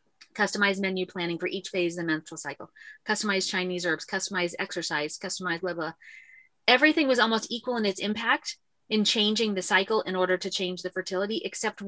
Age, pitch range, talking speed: 30-49, 180-210 Hz, 175 wpm